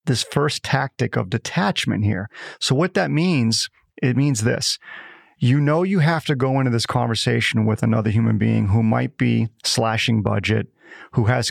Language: English